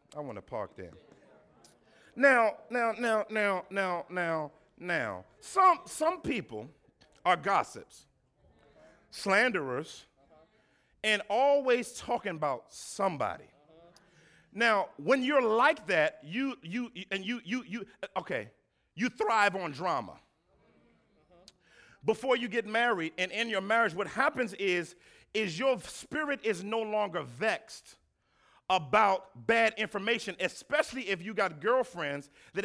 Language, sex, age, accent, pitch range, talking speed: English, male, 50-69, American, 195-255 Hz, 120 wpm